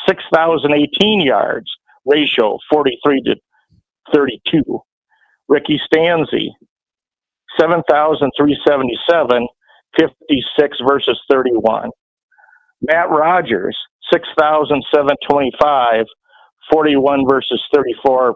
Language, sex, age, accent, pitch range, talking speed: English, male, 50-69, American, 125-170 Hz, 60 wpm